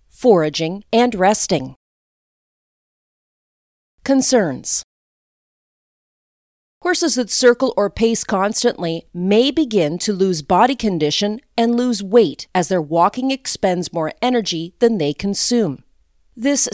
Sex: female